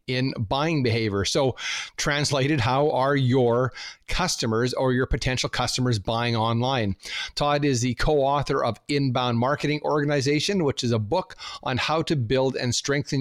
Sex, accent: male, American